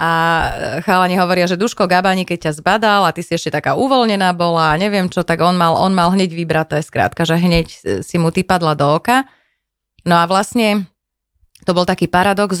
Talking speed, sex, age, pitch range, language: 210 wpm, female, 20-39, 165-200 Hz, Slovak